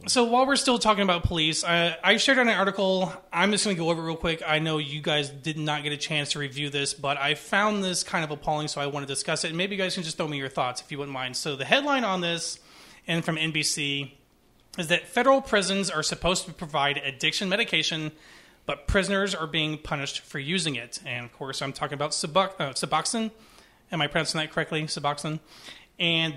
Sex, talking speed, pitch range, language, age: male, 230 wpm, 140-170 Hz, English, 30-49